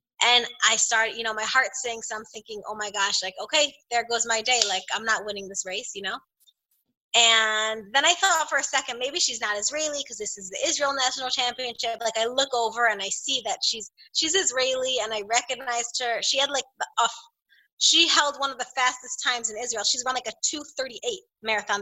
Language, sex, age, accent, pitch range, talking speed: English, female, 20-39, American, 225-280 Hz, 220 wpm